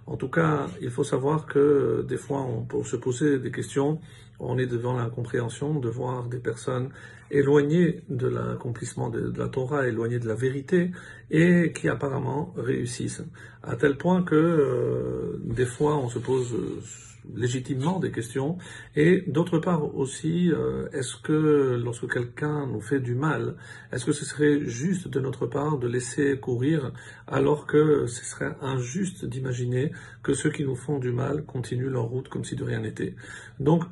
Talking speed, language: 170 wpm, French